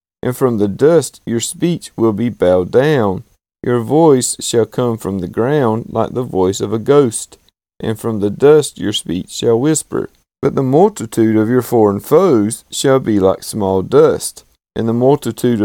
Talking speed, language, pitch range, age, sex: 175 wpm, English, 105-145 Hz, 40-59, male